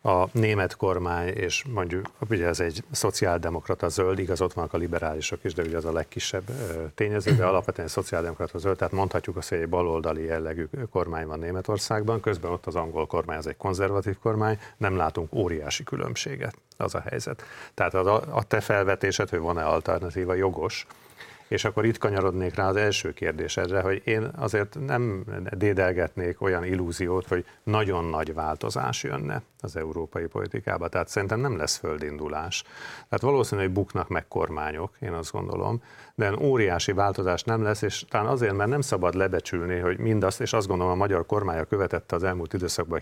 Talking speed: 170 wpm